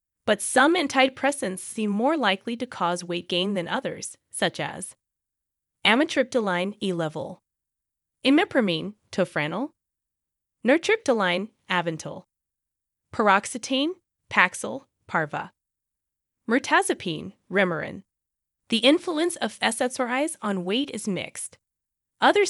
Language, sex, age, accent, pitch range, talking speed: English, female, 20-39, American, 185-260 Hz, 90 wpm